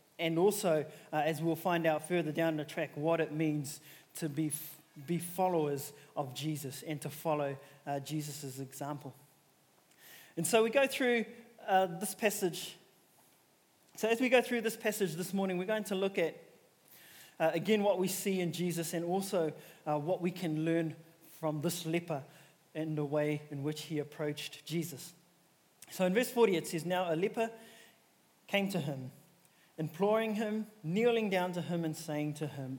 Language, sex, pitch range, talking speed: English, male, 150-185 Hz, 175 wpm